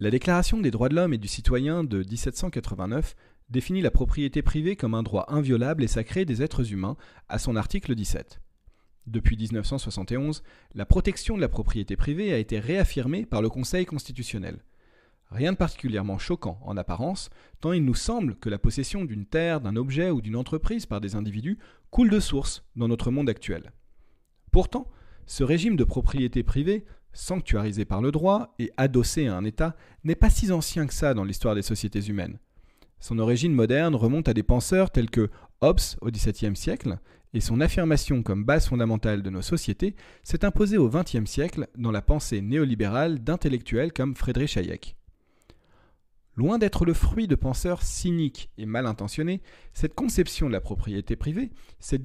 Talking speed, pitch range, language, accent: 175 wpm, 110-160 Hz, French, French